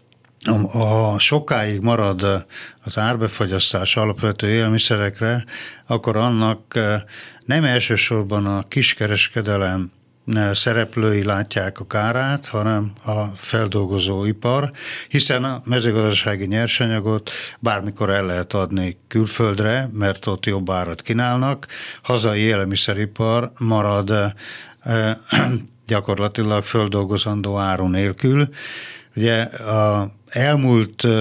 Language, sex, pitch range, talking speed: Hungarian, male, 105-120 Hz, 85 wpm